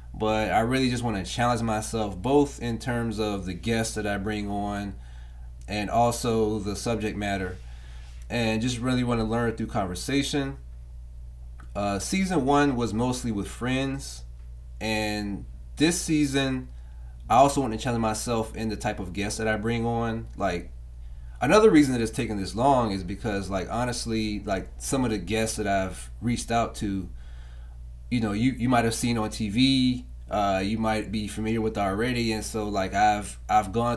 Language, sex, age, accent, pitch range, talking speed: English, male, 30-49, American, 95-115 Hz, 175 wpm